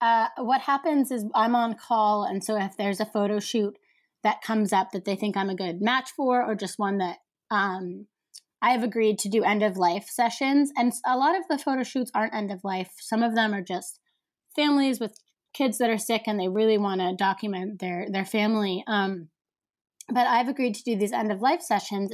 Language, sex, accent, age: English, female, American, 20-39